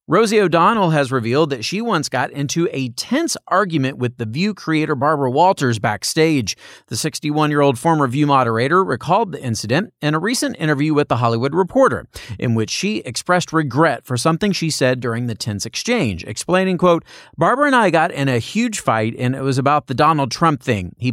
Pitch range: 125-170 Hz